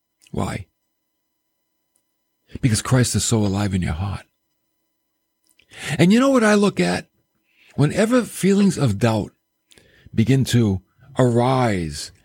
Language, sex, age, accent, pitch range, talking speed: English, male, 50-69, American, 105-150 Hz, 115 wpm